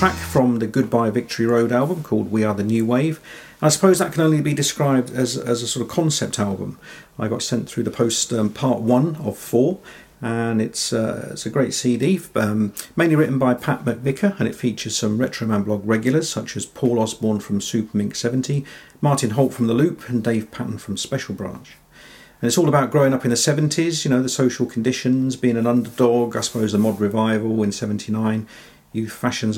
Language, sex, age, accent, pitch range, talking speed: English, male, 50-69, British, 110-135 Hz, 210 wpm